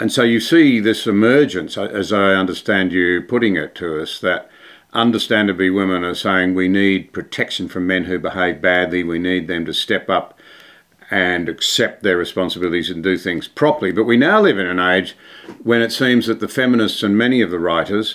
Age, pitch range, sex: 50-69, 90-120 Hz, male